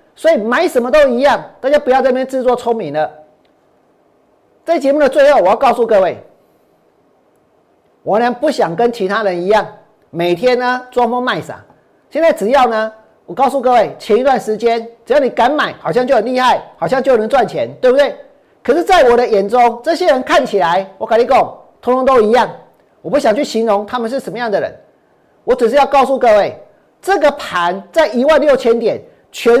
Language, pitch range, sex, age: Chinese, 225-310 Hz, male, 40-59